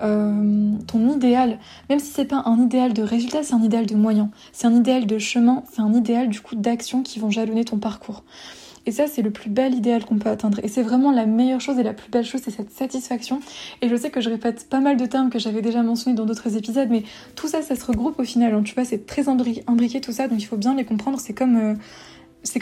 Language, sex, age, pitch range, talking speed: French, female, 20-39, 225-265 Hz, 265 wpm